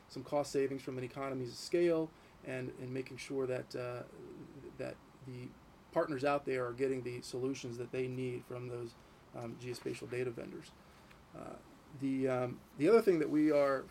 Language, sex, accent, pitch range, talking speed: English, male, American, 130-160 Hz, 175 wpm